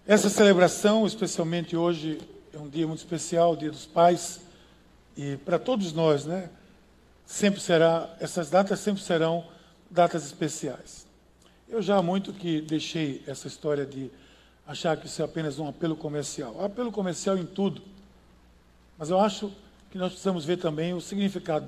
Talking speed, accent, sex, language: 160 wpm, Brazilian, male, Portuguese